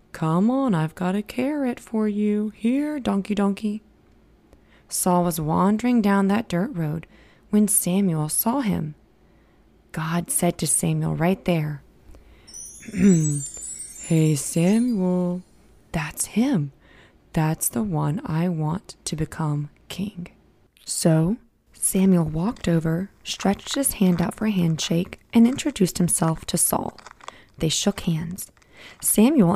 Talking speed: 120 wpm